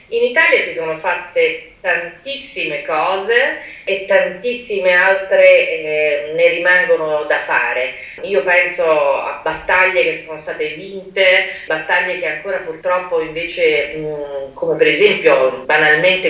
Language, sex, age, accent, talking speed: Italian, female, 30-49, native, 120 wpm